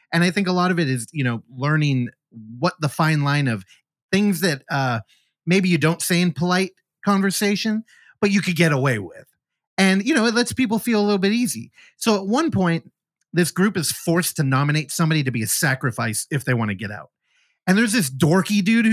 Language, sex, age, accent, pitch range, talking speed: English, male, 30-49, American, 135-195 Hz, 220 wpm